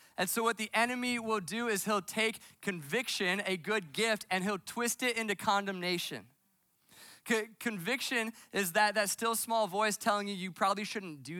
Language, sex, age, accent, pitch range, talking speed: English, male, 20-39, American, 150-210 Hz, 175 wpm